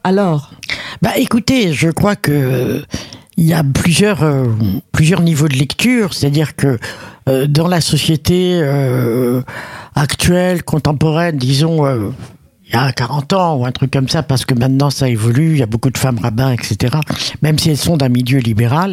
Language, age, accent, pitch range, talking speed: French, 60-79, French, 125-160 Hz, 170 wpm